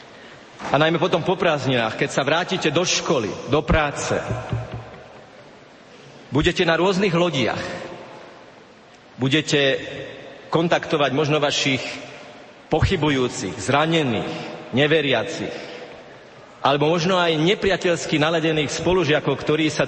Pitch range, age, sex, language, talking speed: 135-170 Hz, 40-59, male, Slovak, 95 wpm